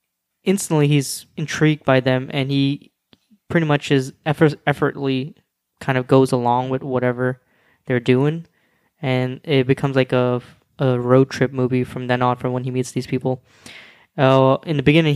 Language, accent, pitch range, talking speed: English, American, 130-140 Hz, 165 wpm